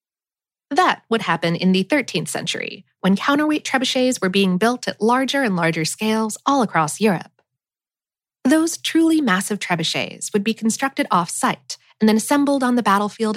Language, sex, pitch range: English, female, 175-235 Hz